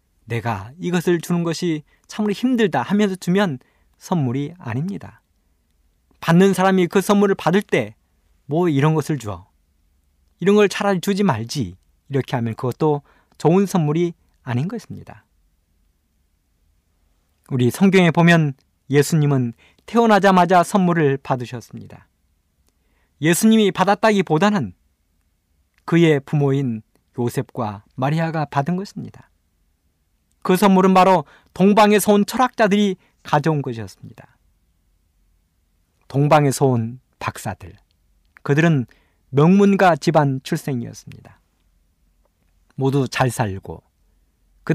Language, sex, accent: Korean, male, native